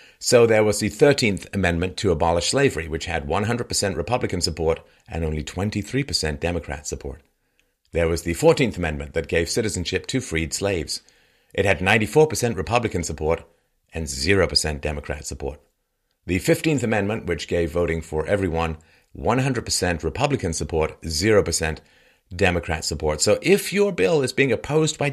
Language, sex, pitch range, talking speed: English, male, 80-105 Hz, 145 wpm